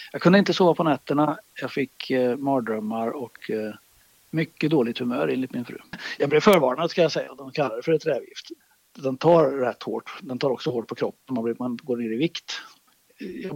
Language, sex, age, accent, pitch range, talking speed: Swedish, male, 60-79, native, 125-165 Hz, 215 wpm